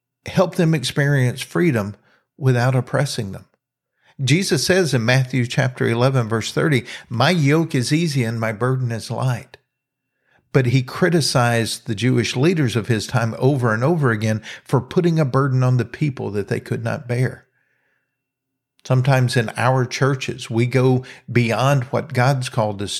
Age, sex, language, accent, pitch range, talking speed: 50-69, male, English, American, 115-135 Hz, 155 wpm